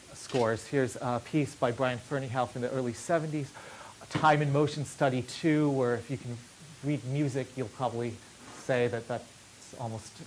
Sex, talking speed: male, 165 wpm